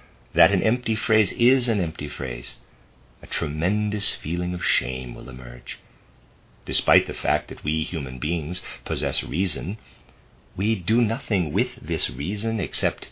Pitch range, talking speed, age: 70-105 Hz, 140 wpm, 50-69